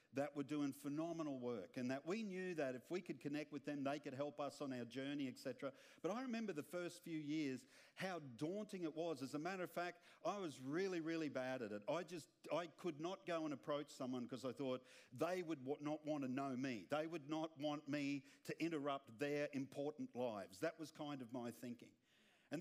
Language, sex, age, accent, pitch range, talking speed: English, male, 50-69, Australian, 135-180 Hz, 220 wpm